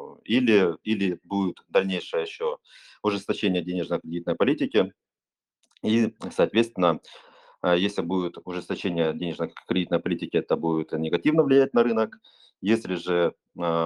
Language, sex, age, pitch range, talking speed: Russian, male, 30-49, 85-135 Hz, 100 wpm